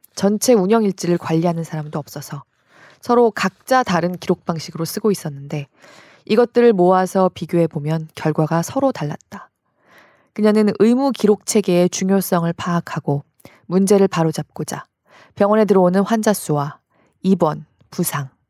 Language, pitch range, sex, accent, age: Korean, 155-210 Hz, female, native, 20-39